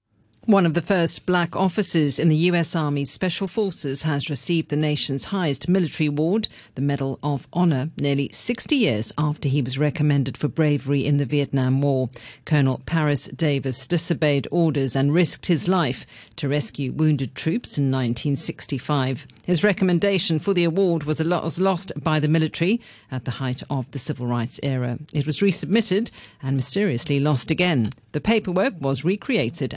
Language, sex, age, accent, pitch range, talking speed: English, female, 50-69, British, 130-170 Hz, 160 wpm